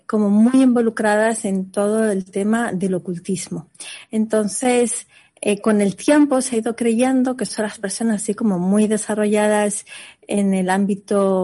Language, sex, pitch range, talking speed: Spanish, female, 195-230 Hz, 150 wpm